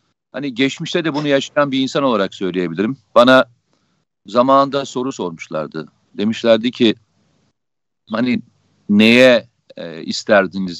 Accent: native